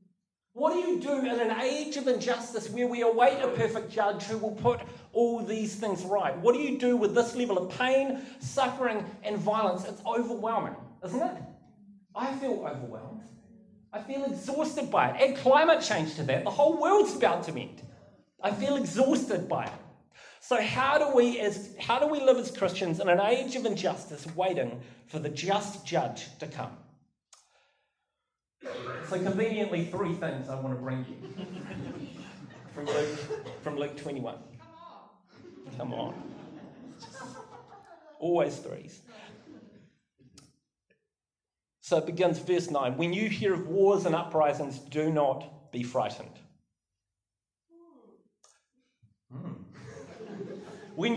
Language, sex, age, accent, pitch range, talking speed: English, male, 30-49, Australian, 175-250 Hz, 140 wpm